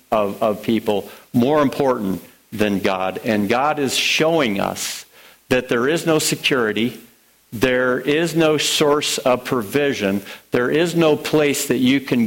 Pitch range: 105-140 Hz